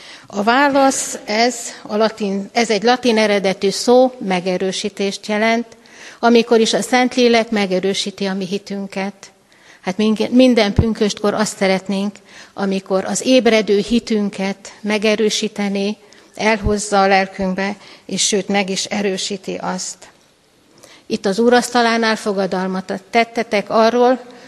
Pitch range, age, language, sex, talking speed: 195-230 Hz, 60-79, Hungarian, female, 110 wpm